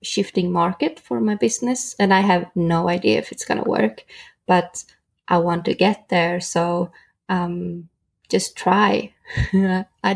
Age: 20-39